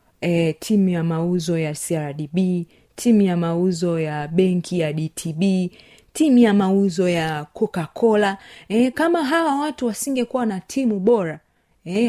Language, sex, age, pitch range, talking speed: Swahili, female, 30-49, 170-220 Hz, 135 wpm